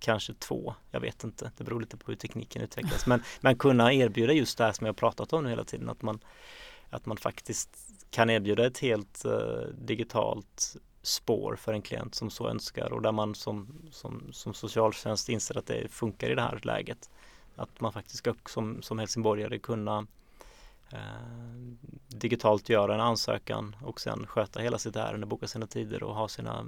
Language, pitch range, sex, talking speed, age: Swedish, 110-125 Hz, male, 190 wpm, 20-39